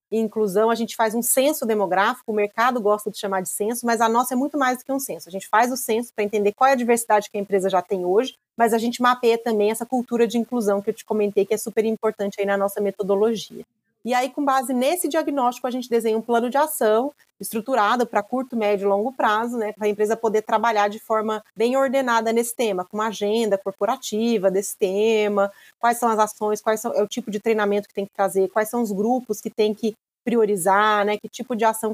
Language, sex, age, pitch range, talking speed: Portuguese, female, 30-49, 210-240 Hz, 240 wpm